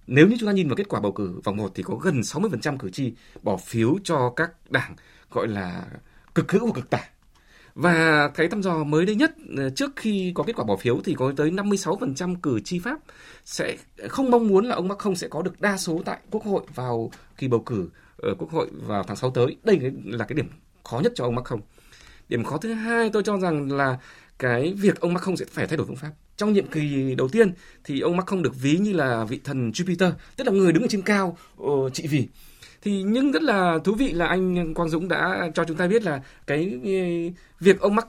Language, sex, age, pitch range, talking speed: Vietnamese, male, 20-39, 150-200 Hz, 240 wpm